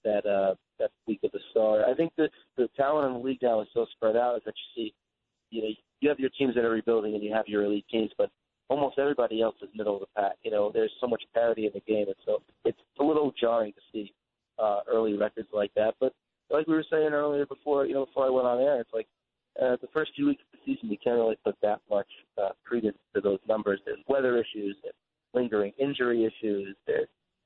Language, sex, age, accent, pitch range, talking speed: English, male, 30-49, American, 110-145 Hz, 245 wpm